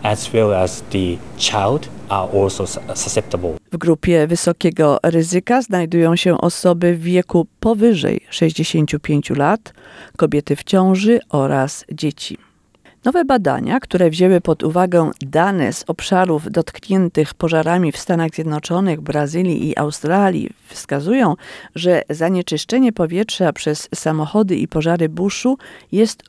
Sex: female